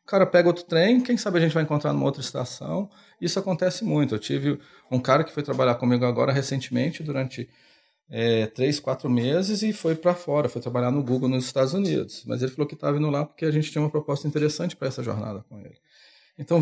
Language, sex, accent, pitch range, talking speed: Portuguese, male, Brazilian, 130-165 Hz, 225 wpm